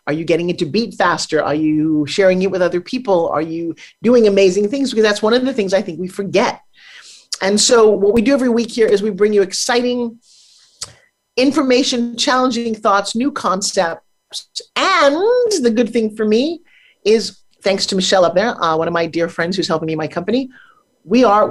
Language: English